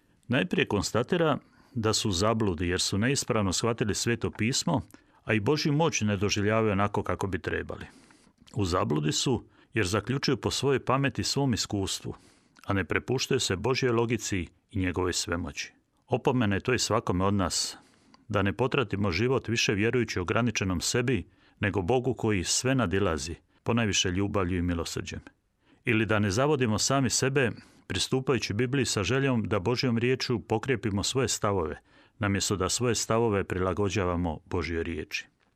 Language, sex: Croatian, male